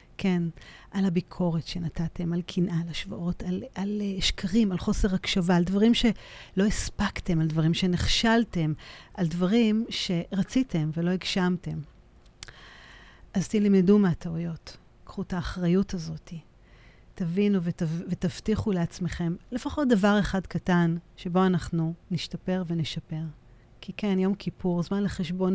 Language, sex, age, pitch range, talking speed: Hebrew, female, 40-59, 170-200 Hz, 120 wpm